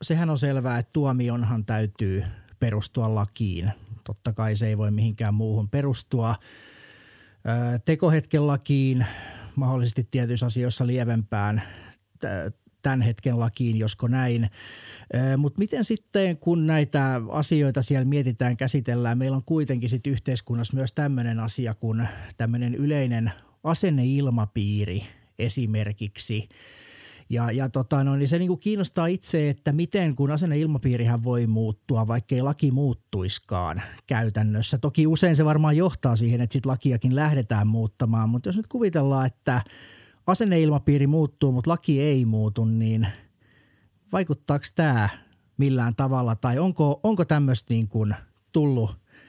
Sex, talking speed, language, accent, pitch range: male, 130 wpm, Finnish, native, 110-145 Hz